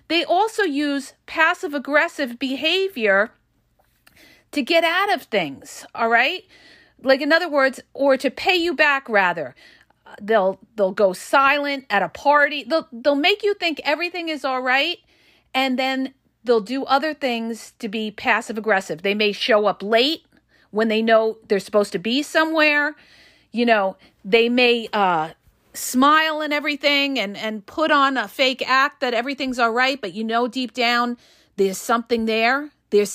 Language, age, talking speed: English, 40-59, 165 wpm